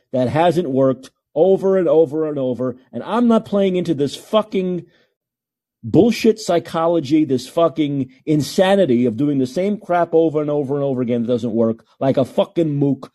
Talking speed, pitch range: 175 wpm, 160-225 Hz